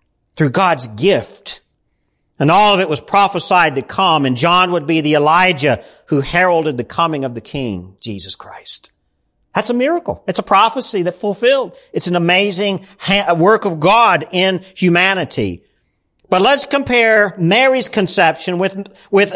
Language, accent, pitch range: English, American, 155-215 Hz